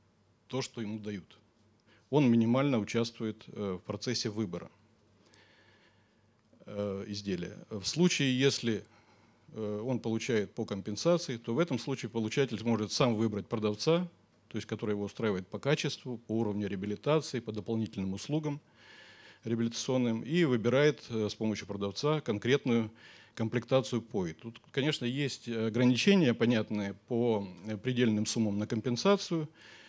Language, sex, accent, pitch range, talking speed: Russian, male, native, 105-130 Hz, 120 wpm